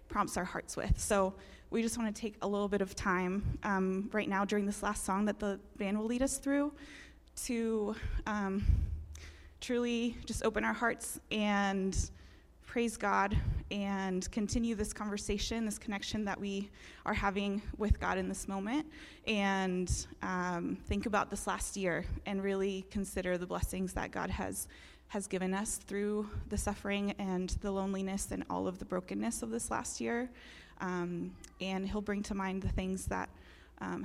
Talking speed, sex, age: 170 wpm, female, 20-39